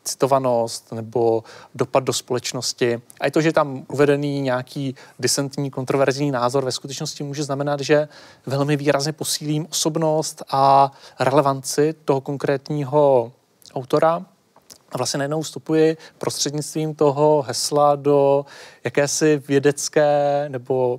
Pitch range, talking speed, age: 130-150 Hz, 110 wpm, 30-49